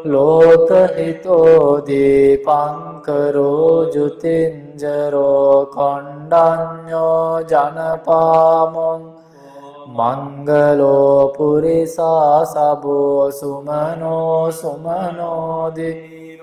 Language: English